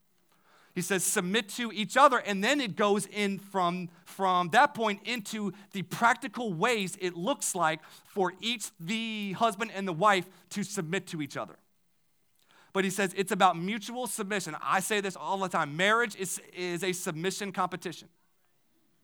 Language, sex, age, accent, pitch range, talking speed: English, male, 30-49, American, 165-205 Hz, 165 wpm